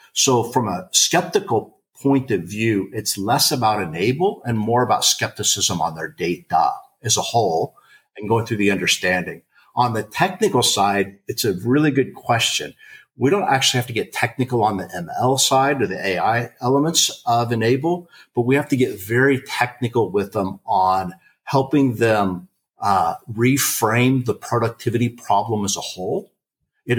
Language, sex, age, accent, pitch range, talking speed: English, male, 50-69, American, 100-130 Hz, 160 wpm